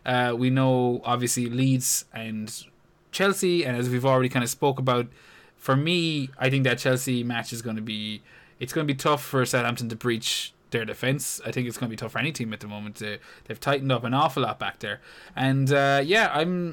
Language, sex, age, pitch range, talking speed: English, male, 20-39, 120-145 Hz, 225 wpm